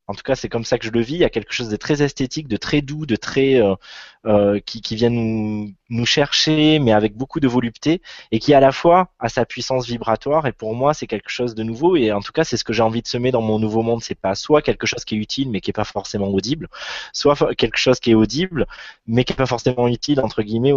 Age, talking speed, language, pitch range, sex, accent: 20-39, 280 wpm, French, 110-135 Hz, male, French